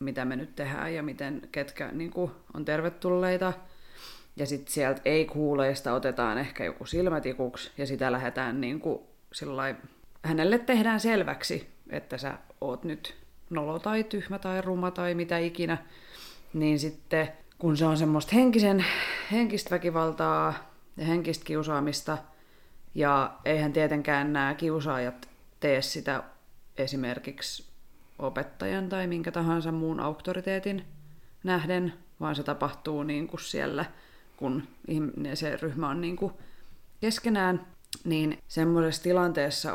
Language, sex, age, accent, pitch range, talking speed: Finnish, female, 30-49, native, 145-175 Hz, 125 wpm